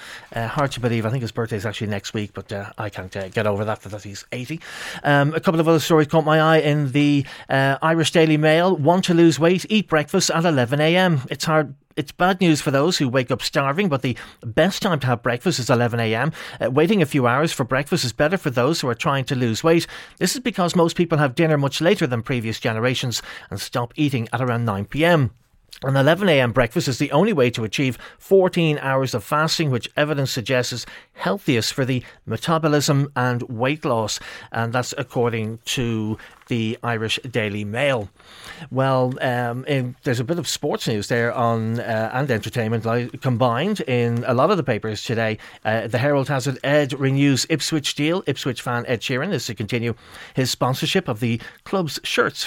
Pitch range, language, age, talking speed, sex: 120-155 Hz, English, 30-49, 205 wpm, male